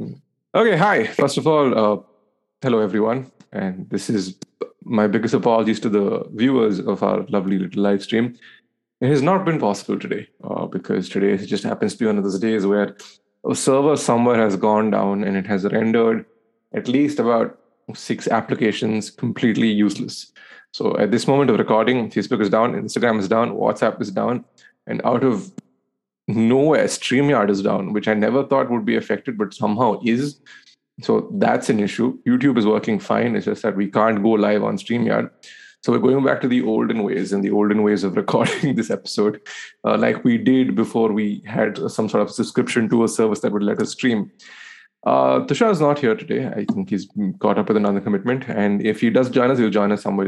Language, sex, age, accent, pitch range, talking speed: English, male, 20-39, Indian, 105-130 Hz, 200 wpm